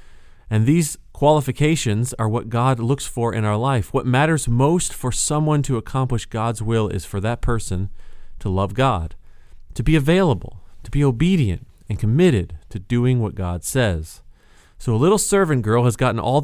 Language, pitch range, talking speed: English, 100-135 Hz, 175 wpm